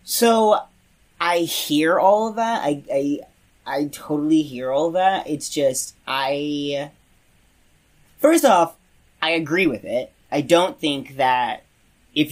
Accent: American